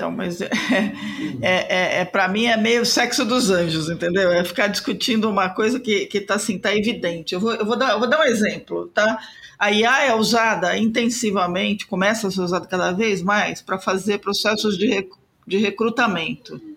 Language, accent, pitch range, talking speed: Portuguese, Brazilian, 180-230 Hz, 185 wpm